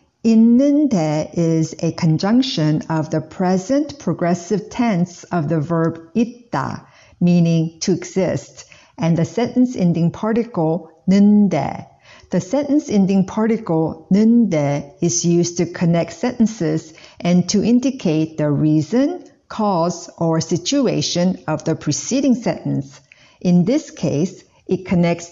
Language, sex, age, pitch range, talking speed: English, female, 50-69, 160-230 Hz, 115 wpm